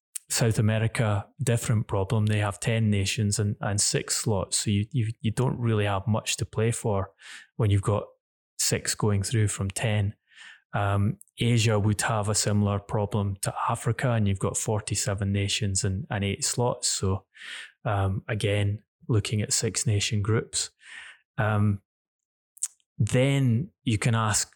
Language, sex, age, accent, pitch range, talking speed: English, male, 20-39, British, 105-115 Hz, 150 wpm